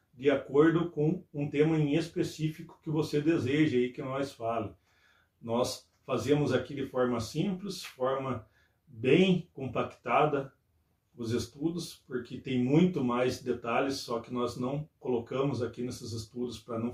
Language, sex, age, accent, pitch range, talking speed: Portuguese, male, 40-59, Brazilian, 120-140 Hz, 140 wpm